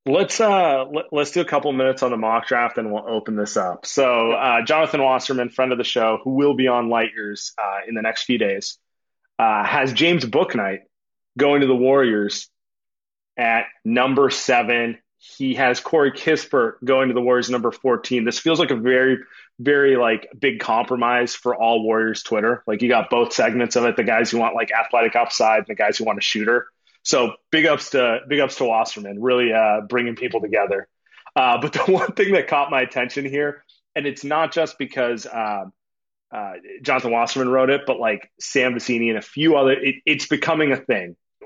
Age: 30-49